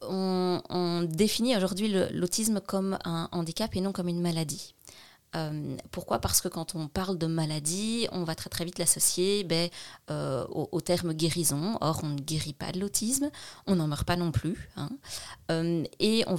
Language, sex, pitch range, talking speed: French, female, 160-195 Hz, 190 wpm